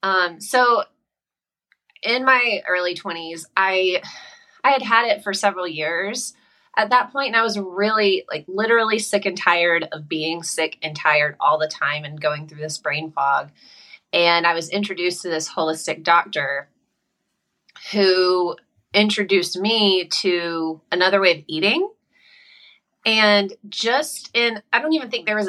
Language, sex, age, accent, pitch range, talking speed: English, female, 30-49, American, 165-220 Hz, 155 wpm